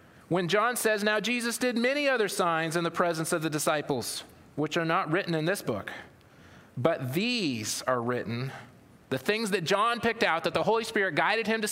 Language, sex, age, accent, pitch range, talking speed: English, male, 30-49, American, 160-210 Hz, 200 wpm